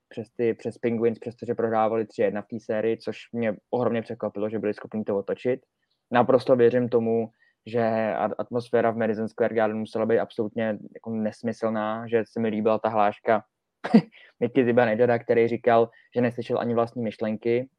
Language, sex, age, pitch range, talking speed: Czech, male, 20-39, 115-125 Hz, 170 wpm